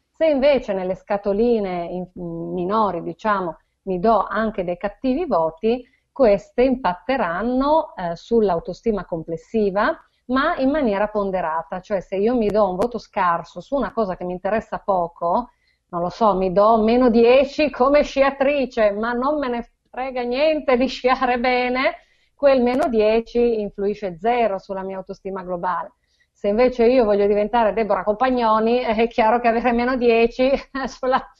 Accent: native